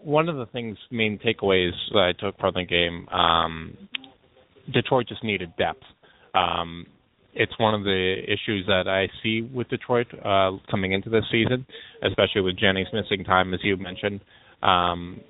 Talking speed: 165 wpm